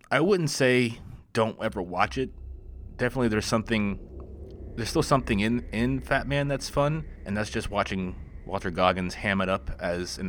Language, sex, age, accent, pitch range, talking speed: English, male, 30-49, American, 85-110 Hz, 175 wpm